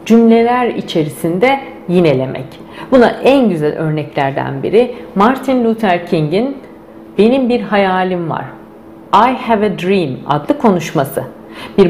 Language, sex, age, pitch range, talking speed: Turkish, female, 50-69, 150-220 Hz, 110 wpm